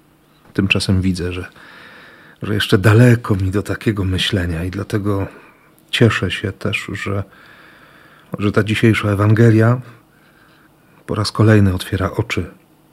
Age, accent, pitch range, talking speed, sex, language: 40-59, native, 95-125 Hz, 115 wpm, male, Polish